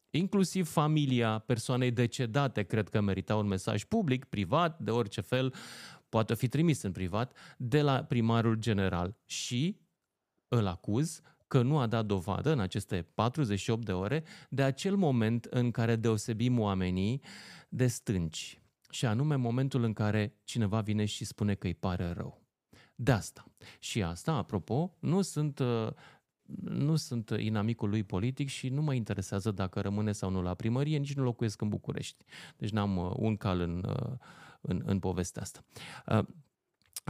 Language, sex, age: Romanian, male, 30-49